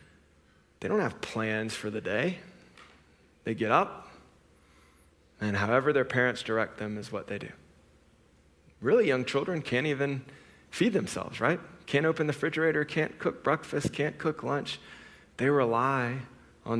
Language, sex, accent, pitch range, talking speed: English, male, American, 105-125 Hz, 145 wpm